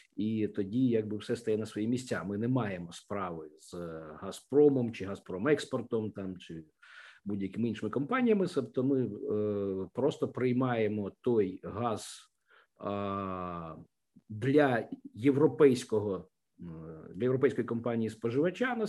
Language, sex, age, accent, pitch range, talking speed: Ukrainian, male, 50-69, native, 110-155 Hz, 110 wpm